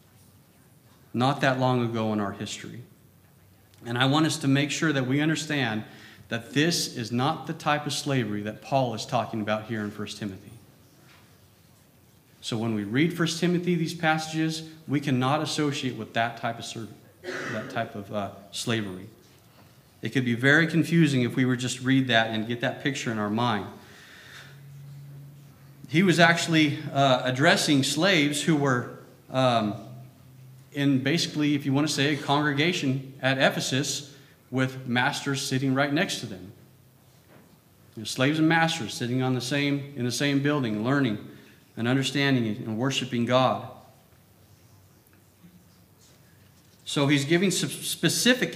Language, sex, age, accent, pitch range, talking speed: English, male, 40-59, American, 120-150 Hz, 150 wpm